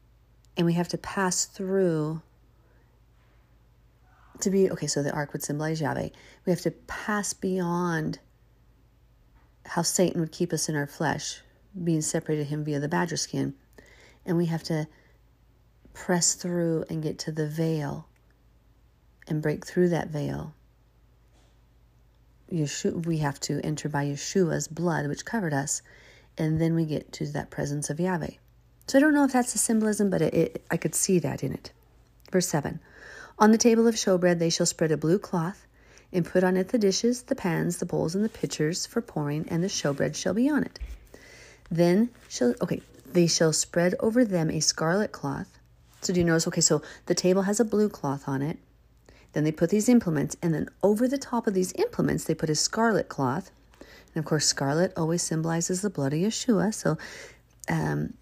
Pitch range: 150-190 Hz